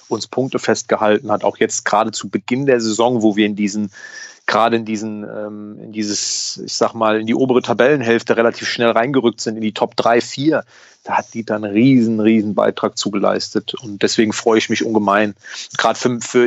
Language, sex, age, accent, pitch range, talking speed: German, male, 30-49, German, 110-130 Hz, 195 wpm